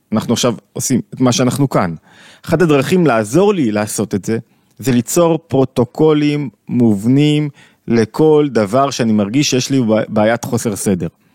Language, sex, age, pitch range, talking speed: Hebrew, male, 30-49, 120-155 Hz, 145 wpm